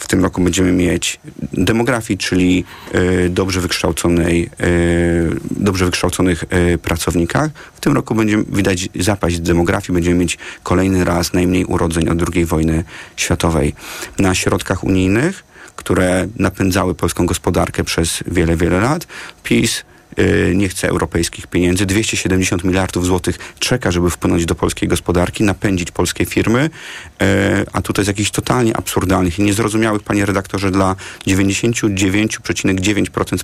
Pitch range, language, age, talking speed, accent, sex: 90-100 Hz, Polish, 30-49, 130 wpm, native, male